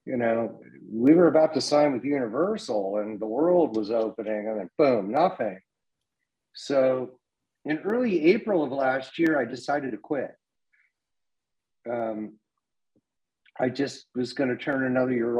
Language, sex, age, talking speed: English, male, 50-69, 155 wpm